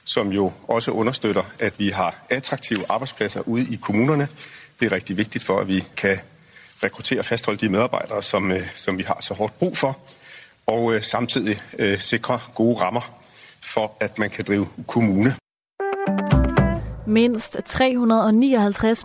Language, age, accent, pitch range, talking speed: Danish, 40-59, native, 175-225 Hz, 145 wpm